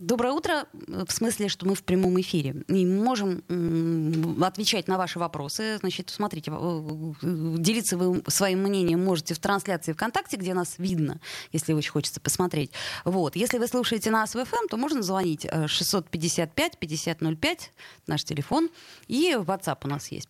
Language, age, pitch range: Russian, 20-39, 160-215 Hz